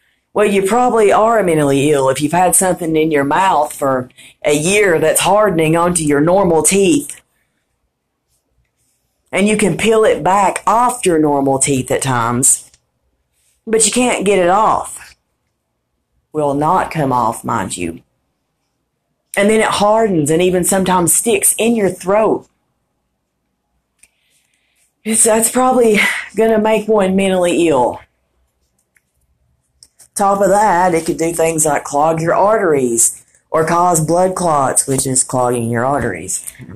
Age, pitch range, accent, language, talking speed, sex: 40-59, 130-200 Hz, American, English, 140 wpm, female